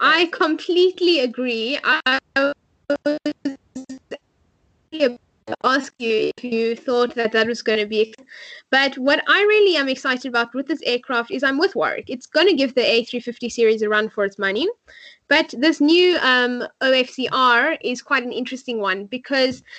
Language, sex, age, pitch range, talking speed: English, female, 10-29, 230-295 Hz, 165 wpm